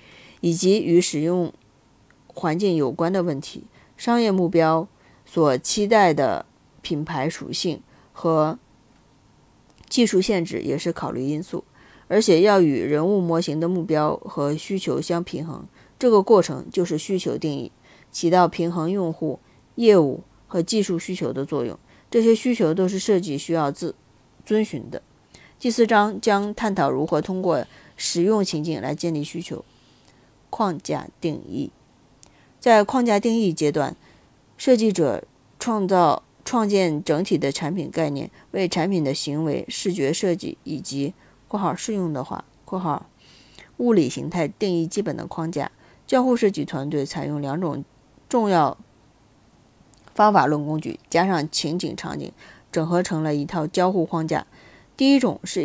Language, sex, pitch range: Chinese, female, 155-200 Hz